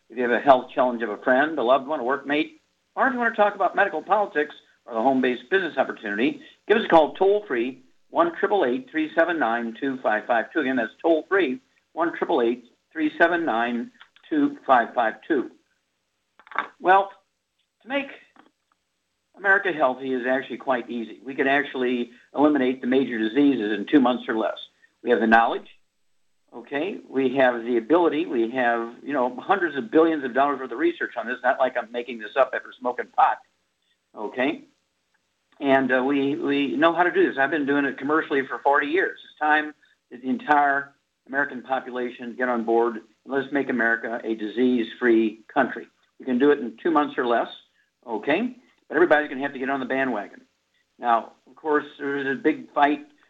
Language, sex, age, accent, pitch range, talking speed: English, male, 60-79, American, 125-165 Hz, 175 wpm